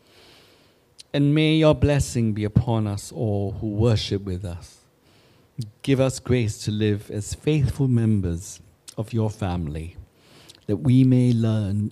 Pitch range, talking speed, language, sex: 100-120 Hz, 135 wpm, English, male